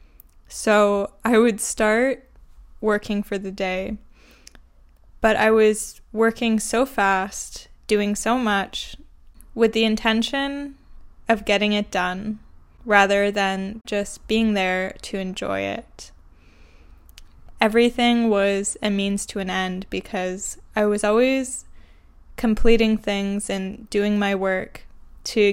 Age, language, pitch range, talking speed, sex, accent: 10-29, English, 190-220 Hz, 120 wpm, female, American